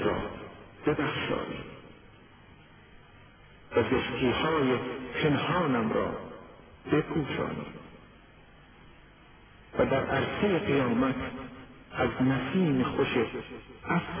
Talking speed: 70 wpm